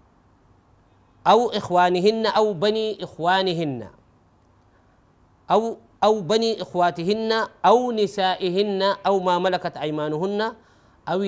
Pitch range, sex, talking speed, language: 155-210 Hz, male, 85 wpm, Arabic